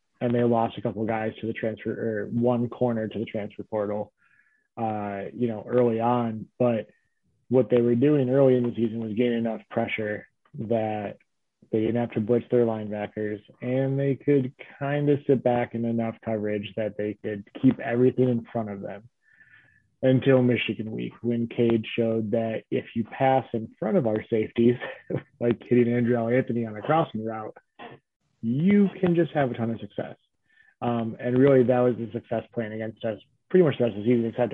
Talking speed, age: 190 wpm, 20-39